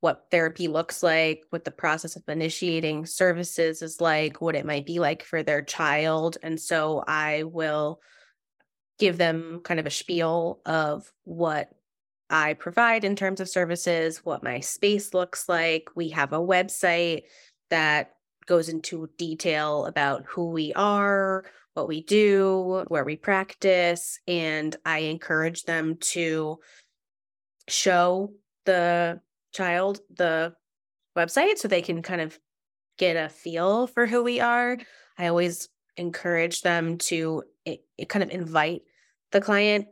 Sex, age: female, 20-39